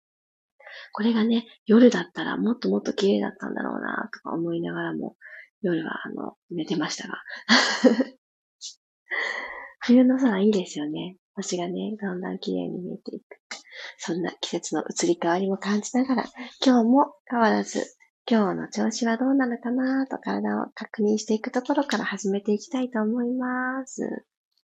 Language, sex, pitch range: Japanese, female, 205-265 Hz